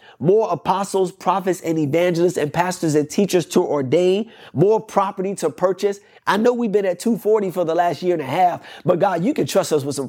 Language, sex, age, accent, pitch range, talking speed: English, male, 30-49, American, 155-185 Hz, 215 wpm